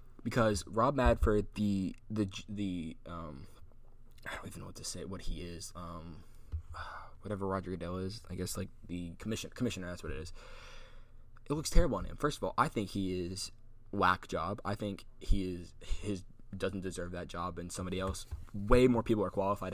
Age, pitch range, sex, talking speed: 10-29, 95-115 Hz, male, 190 wpm